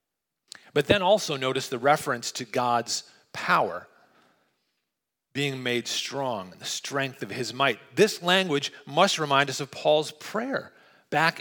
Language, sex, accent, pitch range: English, male, American, 130-175 Hz